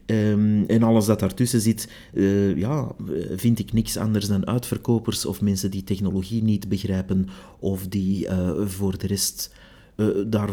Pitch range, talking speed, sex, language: 95-110 Hz, 160 wpm, male, Dutch